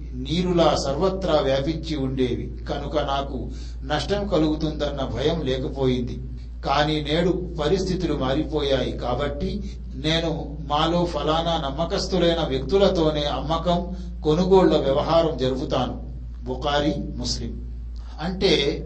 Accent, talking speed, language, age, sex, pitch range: native, 85 wpm, Telugu, 60-79, male, 140-170 Hz